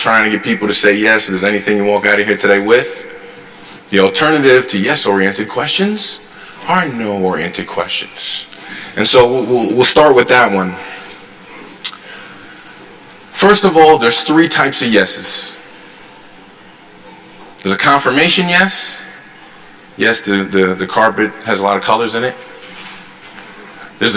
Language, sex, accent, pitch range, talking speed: English, male, American, 100-145 Hz, 140 wpm